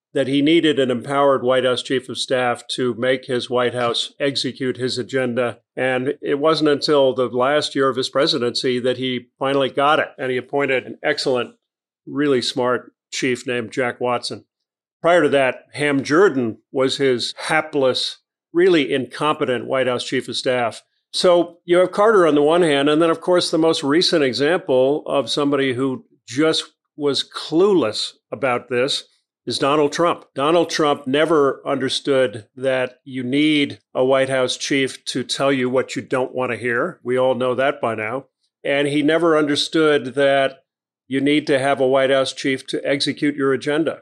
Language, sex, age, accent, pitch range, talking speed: English, male, 40-59, American, 130-150 Hz, 175 wpm